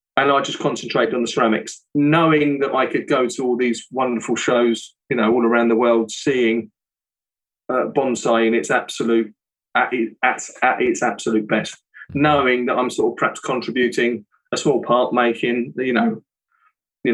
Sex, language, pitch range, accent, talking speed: male, English, 120-155 Hz, British, 170 wpm